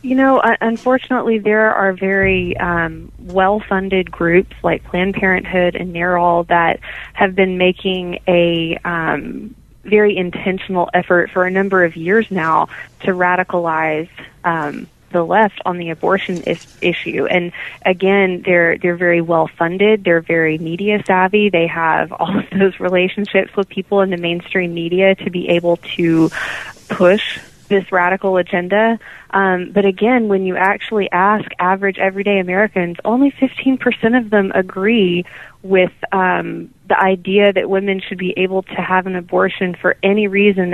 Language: English